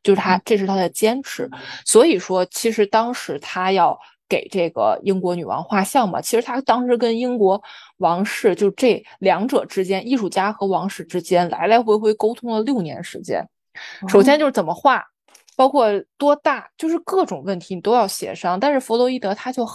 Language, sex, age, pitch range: Chinese, female, 20-39, 185-225 Hz